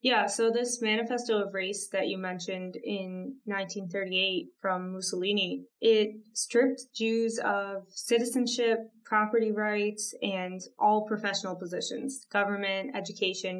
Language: English